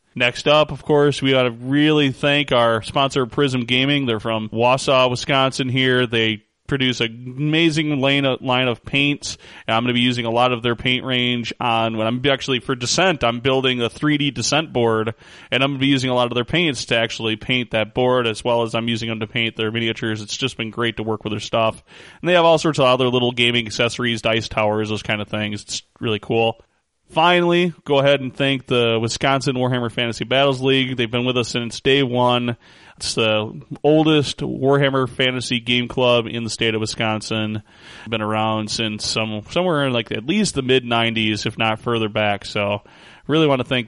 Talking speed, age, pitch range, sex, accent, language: 210 wpm, 20-39, 115-135 Hz, male, American, English